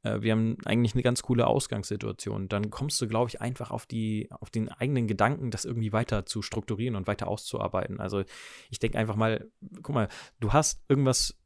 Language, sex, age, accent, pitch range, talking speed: German, male, 20-39, German, 105-130 Hz, 195 wpm